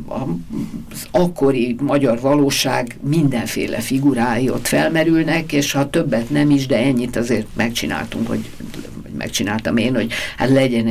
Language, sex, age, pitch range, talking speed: Hungarian, female, 60-79, 115-150 Hz, 125 wpm